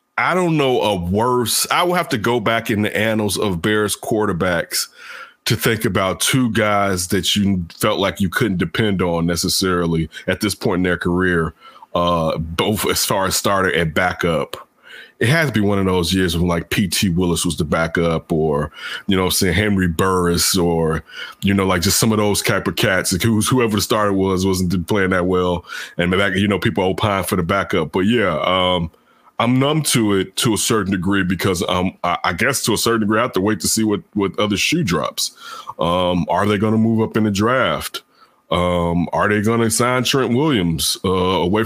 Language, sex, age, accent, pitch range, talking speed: English, male, 30-49, American, 90-115 Hz, 210 wpm